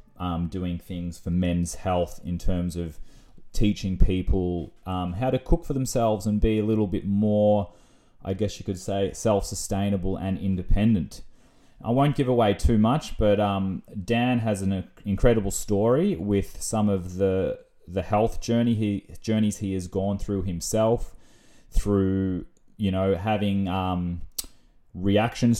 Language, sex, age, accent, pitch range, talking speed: English, male, 20-39, Australian, 95-110 Hz, 150 wpm